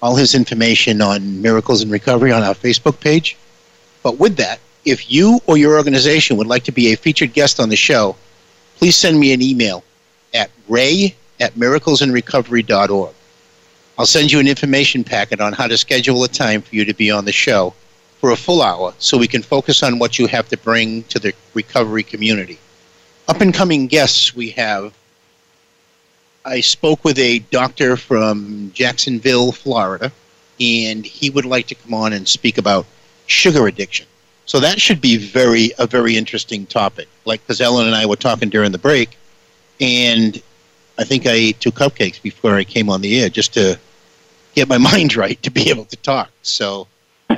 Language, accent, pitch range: English, American, 110-135 Hz